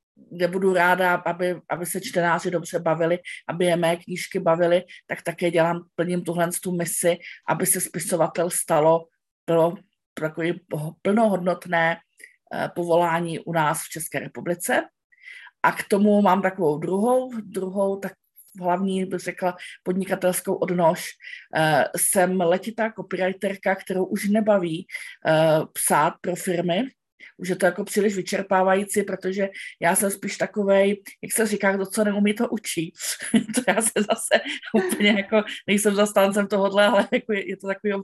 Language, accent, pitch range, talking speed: Czech, native, 175-205 Hz, 140 wpm